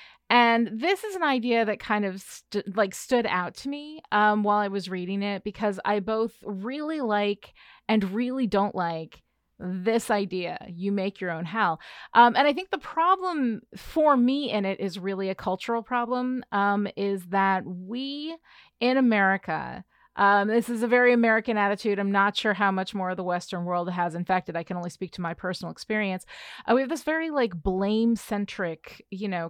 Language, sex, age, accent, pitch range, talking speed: English, female, 30-49, American, 190-240 Hz, 190 wpm